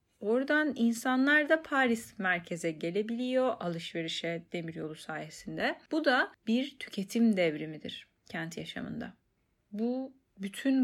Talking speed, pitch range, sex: 100 wpm, 180-255 Hz, female